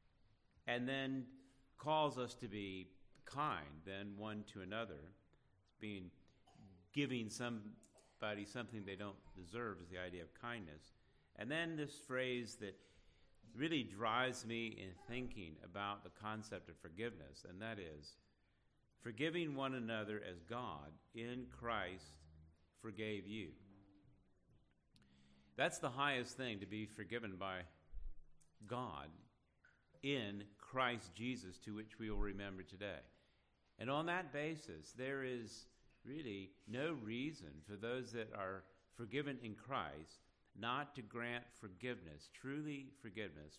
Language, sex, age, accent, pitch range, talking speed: English, male, 50-69, American, 95-125 Hz, 125 wpm